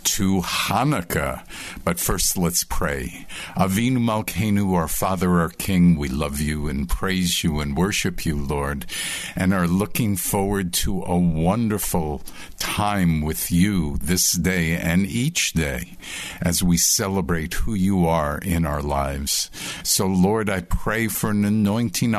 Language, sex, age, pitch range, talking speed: English, male, 50-69, 85-100 Hz, 145 wpm